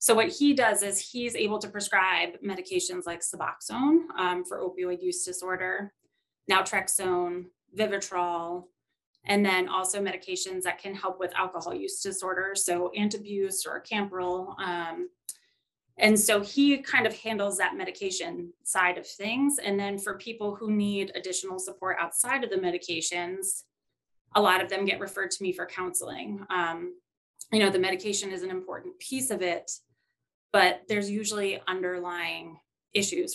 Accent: American